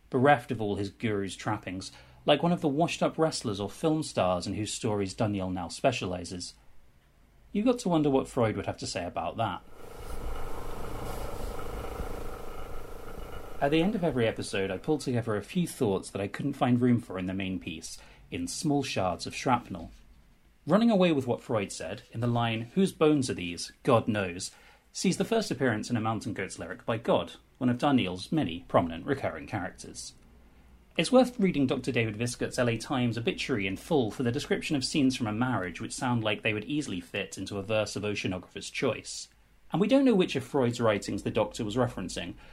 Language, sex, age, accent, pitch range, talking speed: English, male, 30-49, British, 100-145 Hz, 195 wpm